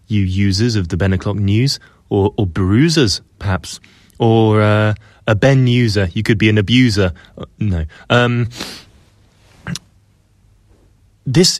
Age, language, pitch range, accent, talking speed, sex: 20-39, English, 95-120 Hz, British, 125 wpm, male